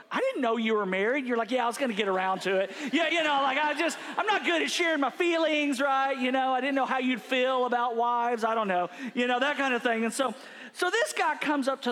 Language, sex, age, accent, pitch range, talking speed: English, male, 40-59, American, 210-265 Hz, 290 wpm